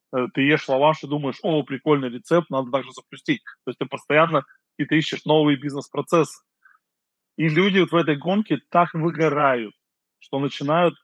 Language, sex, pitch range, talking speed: Russian, male, 130-155 Hz, 170 wpm